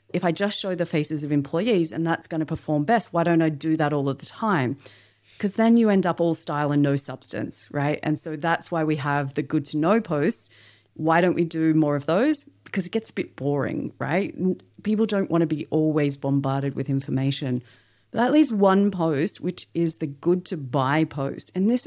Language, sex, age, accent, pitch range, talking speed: English, female, 30-49, Australian, 155-205 Hz, 225 wpm